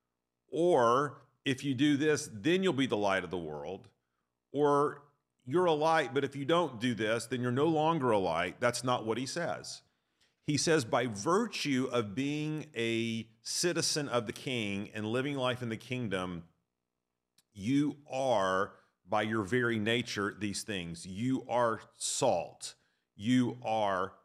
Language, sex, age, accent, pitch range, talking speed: English, male, 40-59, American, 100-125 Hz, 160 wpm